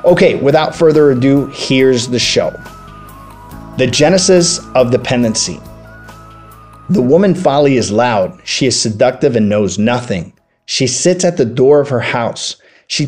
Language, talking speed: English, 140 wpm